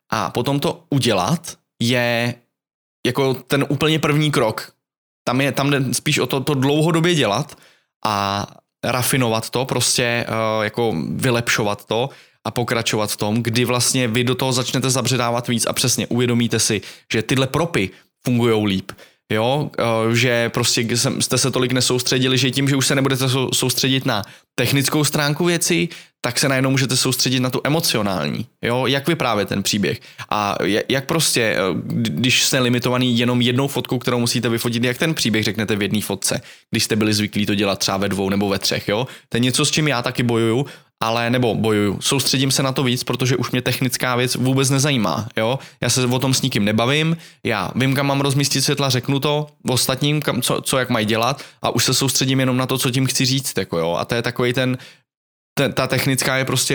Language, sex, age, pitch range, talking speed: Czech, male, 20-39, 120-135 Hz, 190 wpm